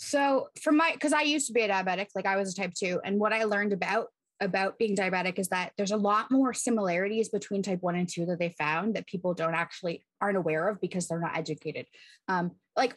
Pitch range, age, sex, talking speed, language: 170-220 Hz, 20-39, female, 240 wpm, English